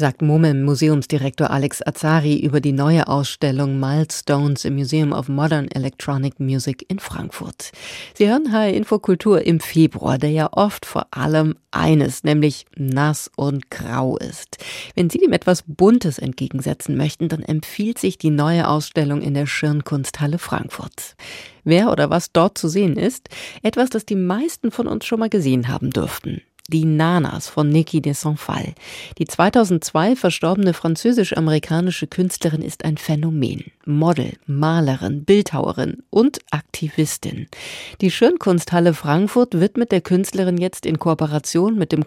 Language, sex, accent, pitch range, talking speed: German, female, German, 150-185 Hz, 145 wpm